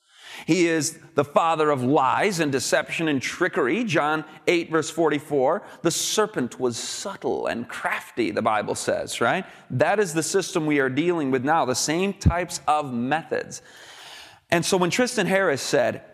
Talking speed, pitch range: 165 wpm, 150-210 Hz